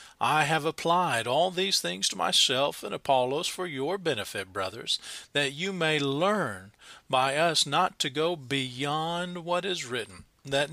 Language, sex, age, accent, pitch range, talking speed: English, male, 40-59, American, 135-180 Hz, 155 wpm